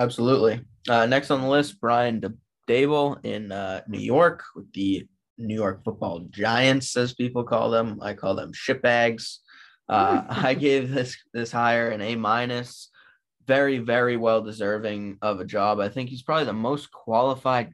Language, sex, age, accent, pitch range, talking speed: English, male, 20-39, American, 110-135 Hz, 170 wpm